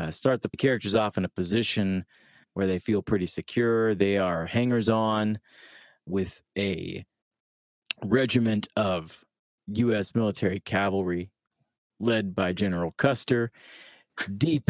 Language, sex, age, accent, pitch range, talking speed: English, male, 30-49, American, 95-115 Hz, 115 wpm